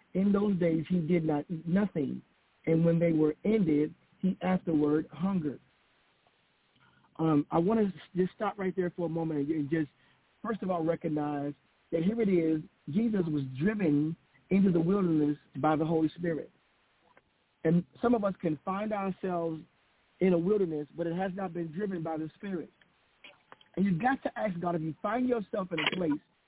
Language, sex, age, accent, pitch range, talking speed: English, male, 50-69, American, 160-200 Hz, 180 wpm